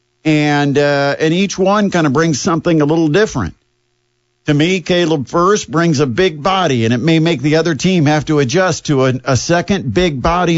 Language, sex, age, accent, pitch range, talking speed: English, male, 50-69, American, 125-170 Hz, 205 wpm